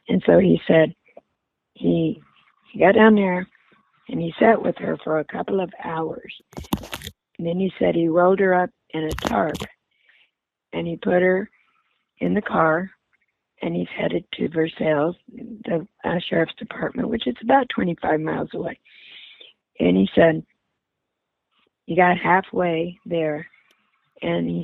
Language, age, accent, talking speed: English, 50-69, American, 150 wpm